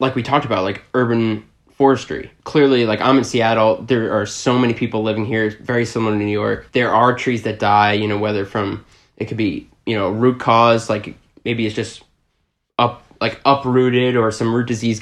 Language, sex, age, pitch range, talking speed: English, male, 20-39, 105-115 Hz, 205 wpm